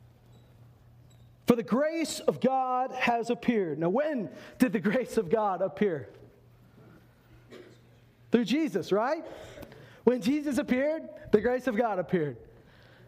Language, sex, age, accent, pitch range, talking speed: English, male, 40-59, American, 165-245 Hz, 120 wpm